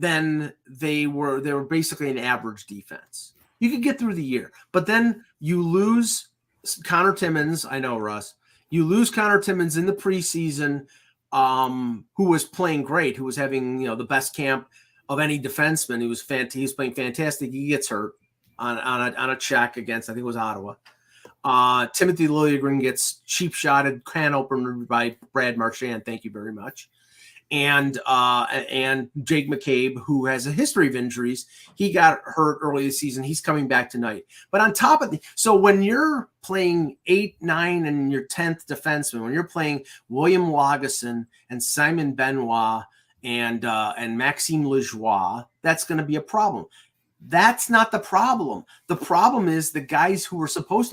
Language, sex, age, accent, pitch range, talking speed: English, male, 30-49, American, 125-175 Hz, 180 wpm